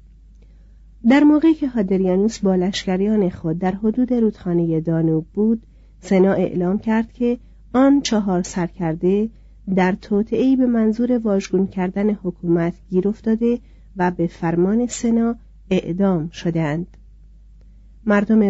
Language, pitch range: Persian, 175-225 Hz